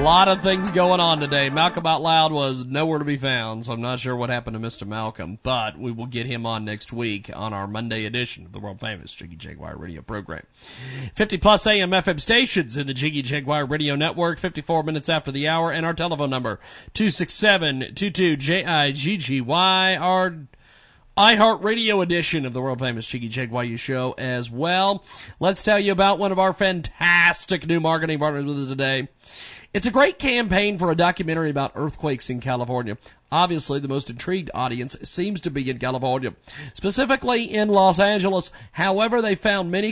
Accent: American